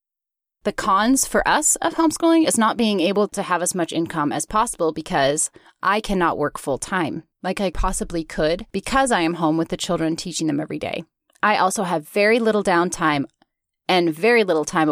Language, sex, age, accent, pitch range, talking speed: English, female, 10-29, American, 165-240 Hz, 195 wpm